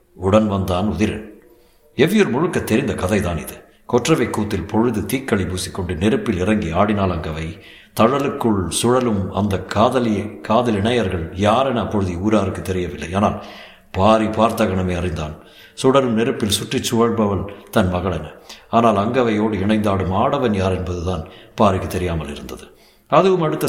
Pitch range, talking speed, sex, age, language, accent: 90-115 Hz, 120 wpm, male, 60-79, Tamil, native